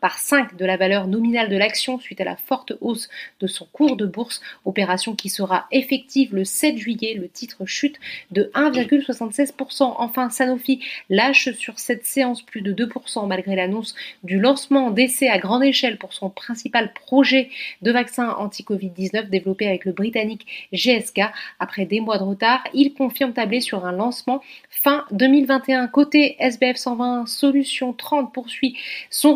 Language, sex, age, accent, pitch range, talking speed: French, female, 30-49, French, 205-265 Hz, 160 wpm